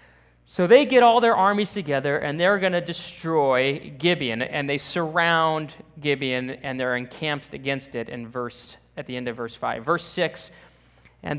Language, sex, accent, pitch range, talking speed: English, male, American, 135-185 Hz, 170 wpm